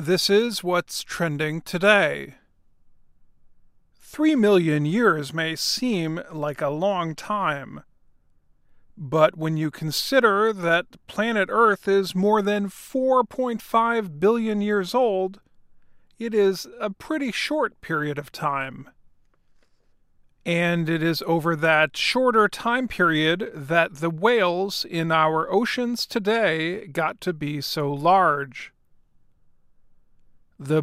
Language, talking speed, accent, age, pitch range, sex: English, 110 wpm, American, 40-59, 155-205 Hz, male